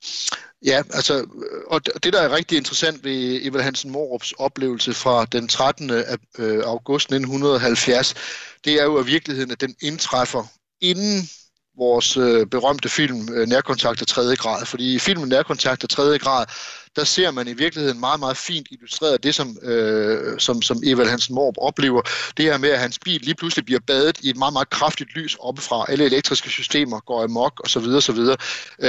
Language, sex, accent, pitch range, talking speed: Danish, male, native, 125-150 Hz, 175 wpm